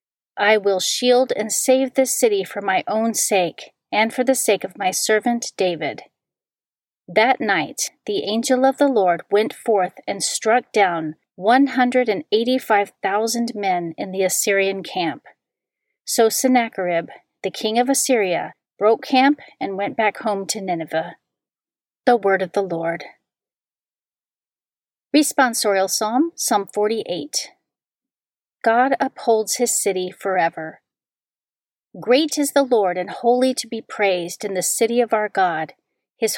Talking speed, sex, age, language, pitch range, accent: 135 wpm, female, 40-59, English, 195-250 Hz, American